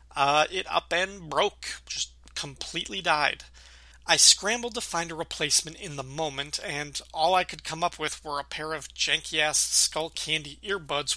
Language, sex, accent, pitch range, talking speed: English, male, American, 135-170 Hz, 170 wpm